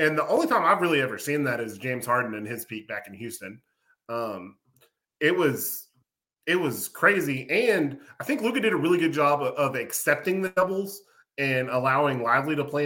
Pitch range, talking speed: 110-150 Hz, 200 wpm